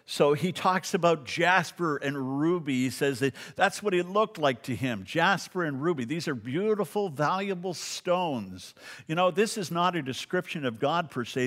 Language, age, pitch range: English, 50-69, 130-185 Hz